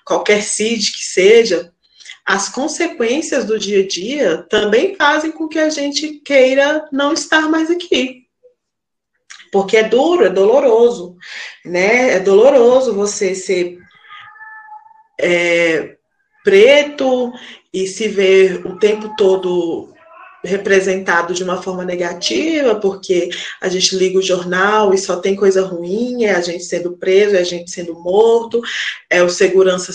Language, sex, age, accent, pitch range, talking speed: Portuguese, female, 20-39, Brazilian, 180-280 Hz, 135 wpm